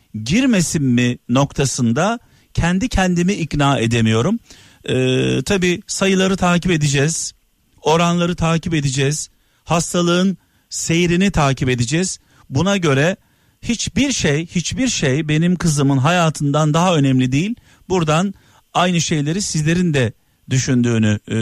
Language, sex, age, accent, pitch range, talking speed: Turkish, male, 50-69, native, 135-180 Hz, 105 wpm